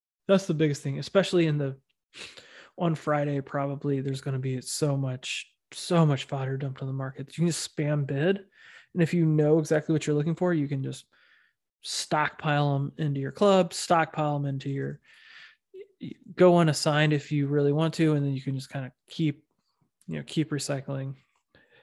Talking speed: 185 wpm